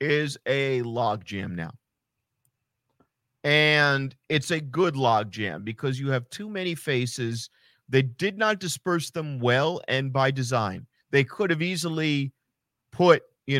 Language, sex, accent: English, male, American